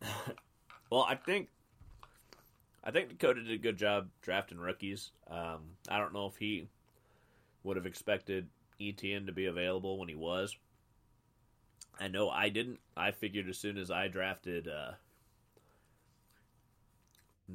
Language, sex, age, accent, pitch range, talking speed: English, male, 30-49, American, 90-115 Hz, 135 wpm